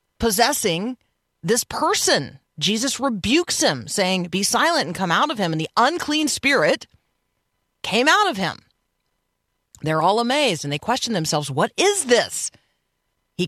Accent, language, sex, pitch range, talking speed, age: American, English, female, 170-255 Hz, 145 wpm, 40-59